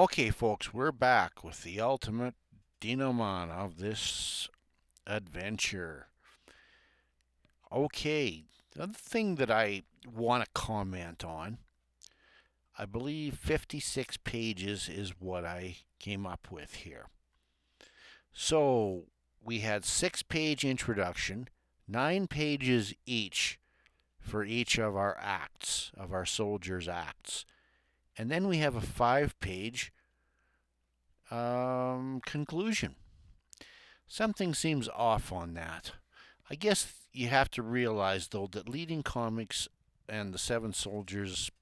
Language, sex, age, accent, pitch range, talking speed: English, male, 60-79, American, 90-125 Hz, 110 wpm